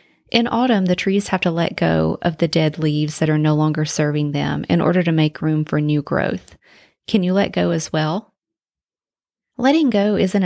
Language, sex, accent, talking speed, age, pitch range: English, female, American, 200 wpm, 30-49, 155-195 Hz